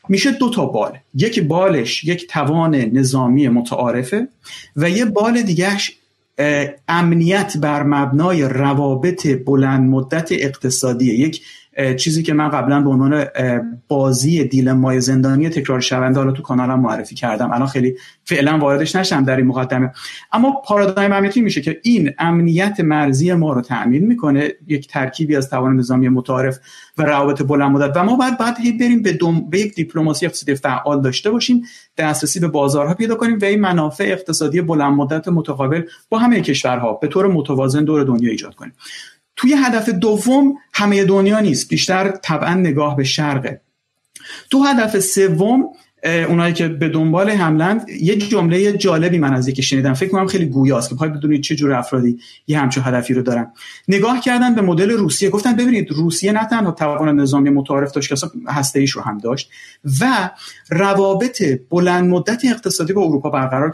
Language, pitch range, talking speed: Persian, 135-195 Hz, 160 wpm